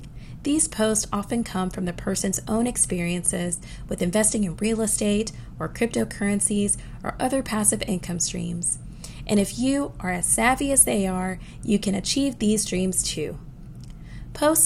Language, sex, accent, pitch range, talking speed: English, female, American, 180-240 Hz, 150 wpm